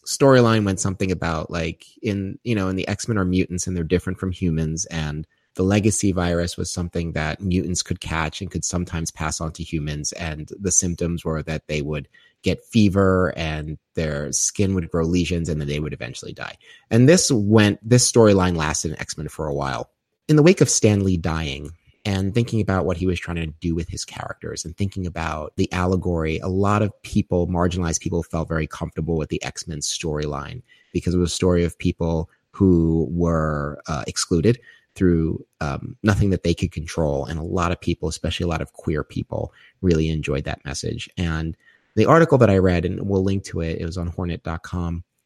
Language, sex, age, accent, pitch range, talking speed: English, male, 30-49, American, 80-95 Hz, 200 wpm